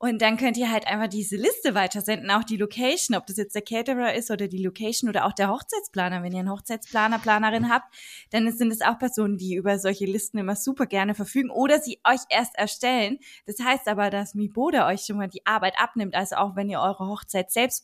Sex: female